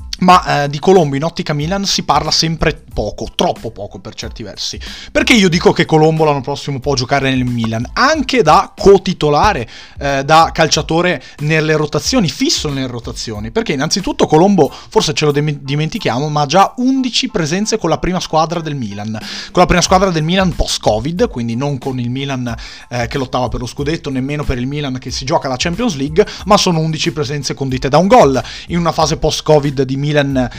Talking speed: 195 wpm